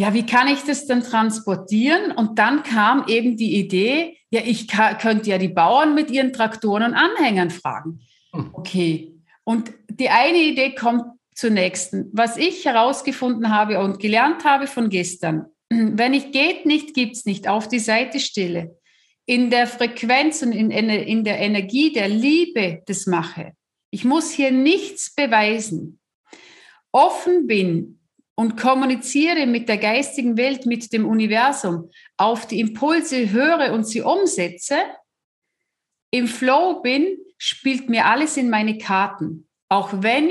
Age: 50-69